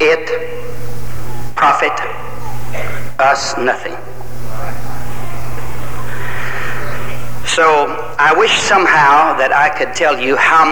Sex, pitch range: male, 120-160 Hz